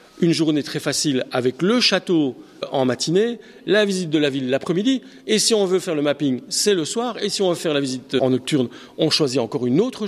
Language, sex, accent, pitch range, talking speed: French, male, French, 135-185 Hz, 230 wpm